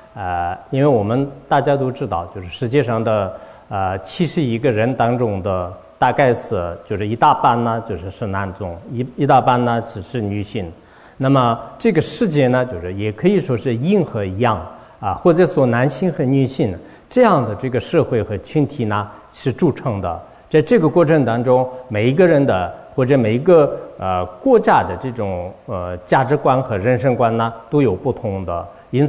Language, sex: English, male